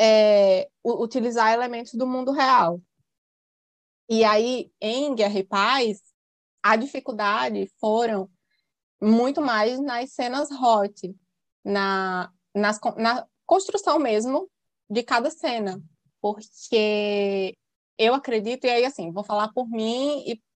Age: 20-39